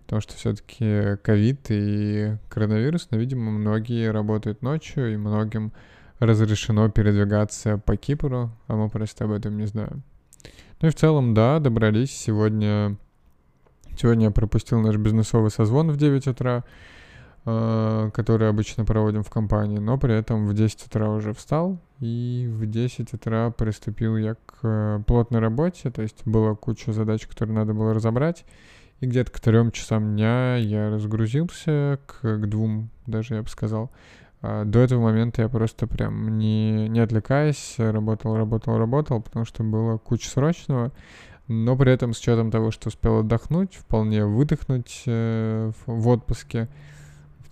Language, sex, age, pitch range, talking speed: Russian, male, 20-39, 110-120 Hz, 150 wpm